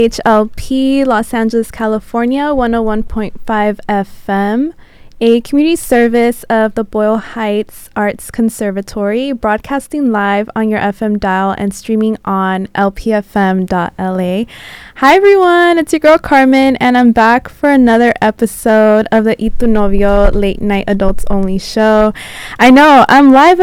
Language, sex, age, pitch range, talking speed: English, female, 20-39, 210-265 Hz, 125 wpm